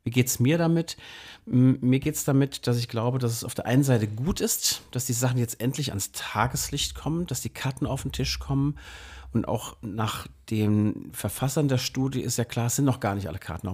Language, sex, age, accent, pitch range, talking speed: German, male, 40-59, German, 100-135 Hz, 230 wpm